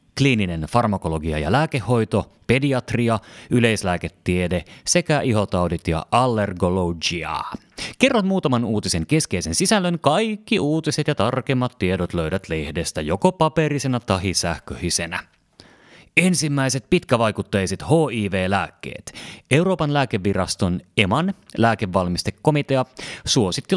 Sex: male